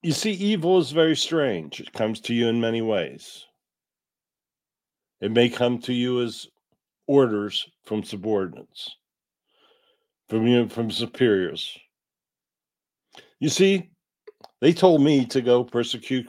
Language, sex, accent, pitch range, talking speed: English, male, American, 110-160 Hz, 130 wpm